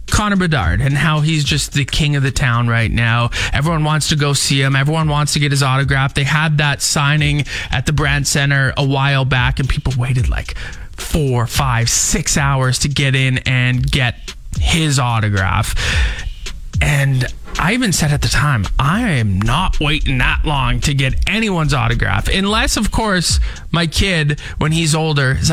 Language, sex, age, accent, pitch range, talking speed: English, male, 20-39, American, 120-165 Hz, 180 wpm